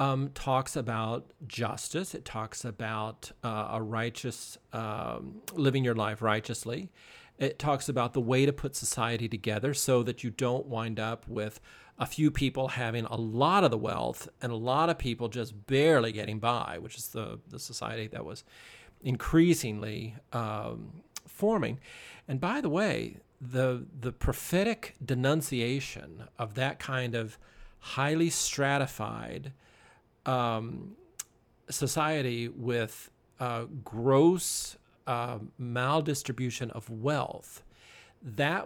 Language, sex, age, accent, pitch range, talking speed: English, male, 40-59, American, 115-135 Hz, 130 wpm